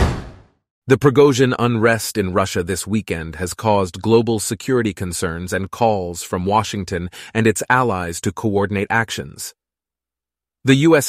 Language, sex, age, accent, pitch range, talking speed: English, male, 30-49, American, 95-125 Hz, 130 wpm